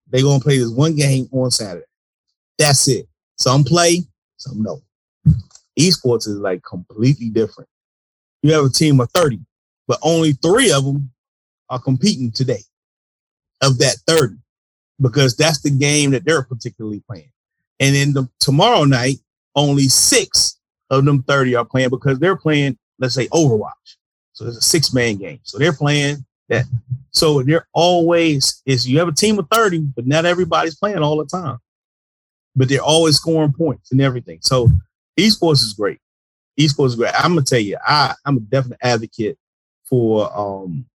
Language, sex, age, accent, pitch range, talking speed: English, male, 30-49, American, 120-150 Hz, 165 wpm